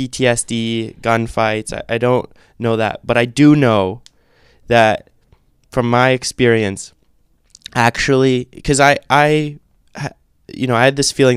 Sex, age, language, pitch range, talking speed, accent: male, 20-39, English, 110-135 Hz, 130 wpm, American